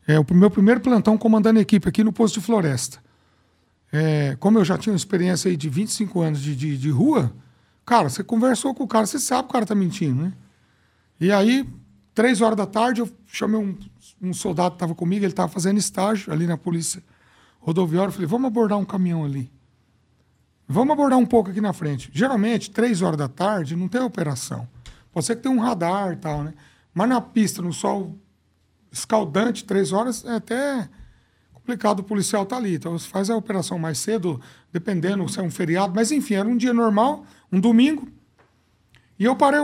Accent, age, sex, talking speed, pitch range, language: Brazilian, 60-79, male, 200 wpm, 160-230 Hz, Portuguese